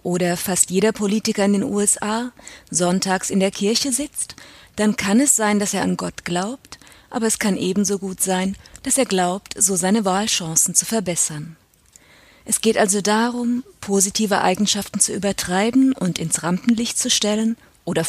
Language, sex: German, female